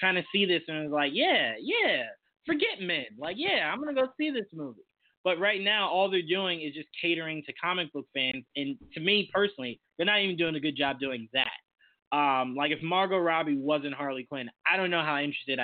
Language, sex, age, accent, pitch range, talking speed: English, male, 20-39, American, 140-170 Hz, 225 wpm